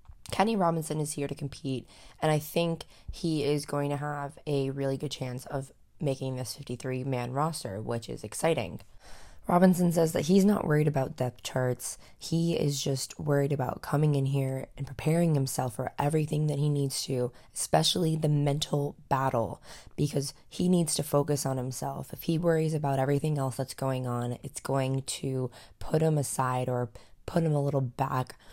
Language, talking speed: English, 175 wpm